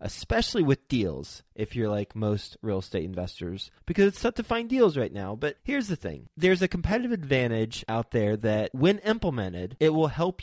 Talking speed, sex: 195 wpm, male